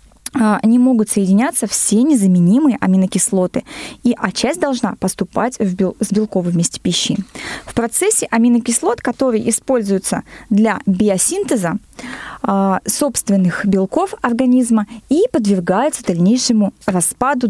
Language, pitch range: Russian, 205-260 Hz